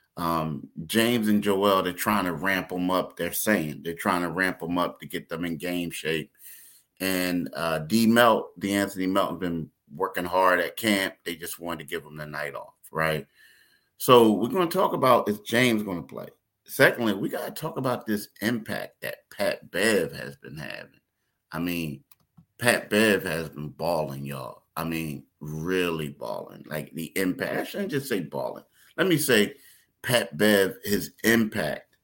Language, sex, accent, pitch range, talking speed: English, male, American, 85-105 Hz, 180 wpm